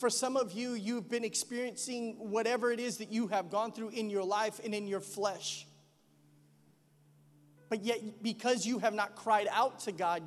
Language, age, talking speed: English, 30-49, 185 wpm